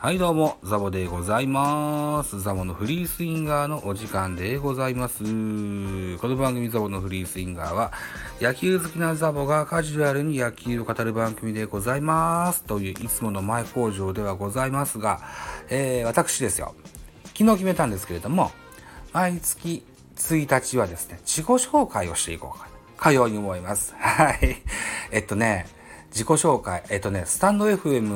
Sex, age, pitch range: male, 40-59, 95-145 Hz